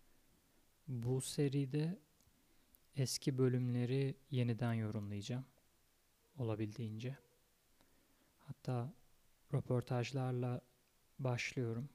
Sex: male